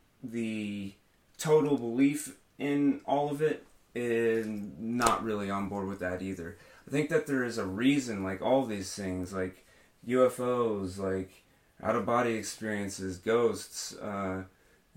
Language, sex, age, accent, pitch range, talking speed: English, male, 30-49, American, 95-125 Hz, 130 wpm